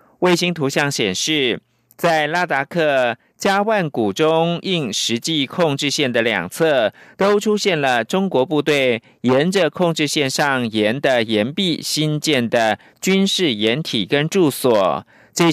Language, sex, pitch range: French, male, 130-175 Hz